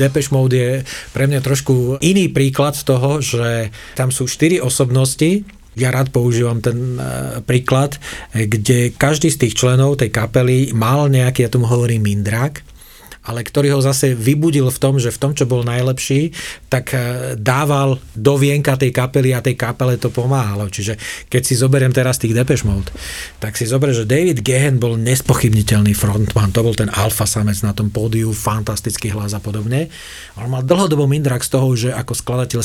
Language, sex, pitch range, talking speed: Slovak, male, 115-135 Hz, 175 wpm